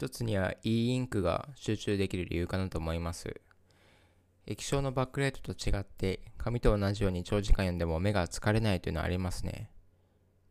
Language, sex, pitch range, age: Japanese, male, 90-115 Hz, 20-39